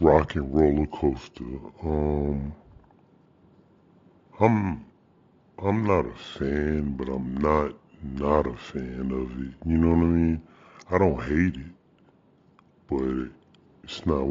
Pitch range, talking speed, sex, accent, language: 70-80 Hz, 120 wpm, female, American, English